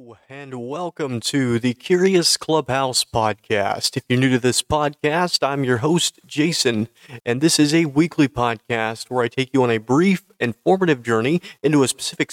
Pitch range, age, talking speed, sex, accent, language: 115-155 Hz, 40-59, 170 wpm, male, American, English